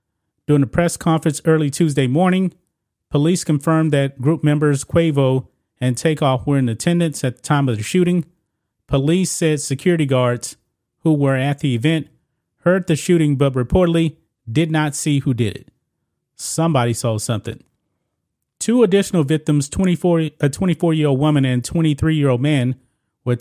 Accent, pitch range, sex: American, 130-165 Hz, male